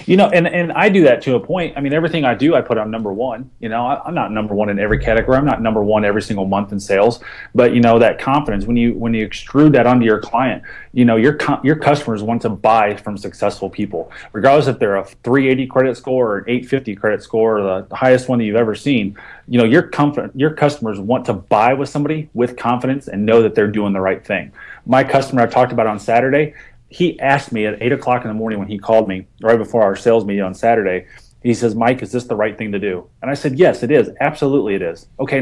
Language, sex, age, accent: English, male, 30-49, American